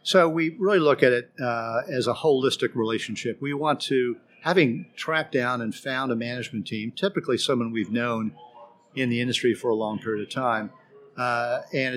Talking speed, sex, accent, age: 185 wpm, male, American, 50-69